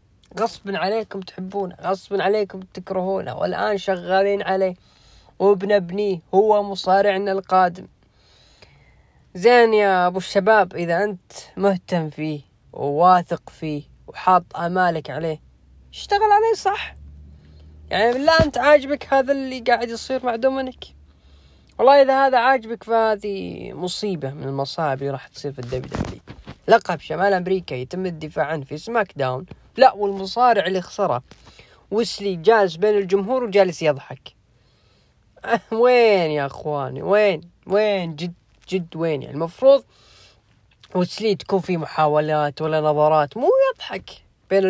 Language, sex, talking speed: Arabic, female, 125 wpm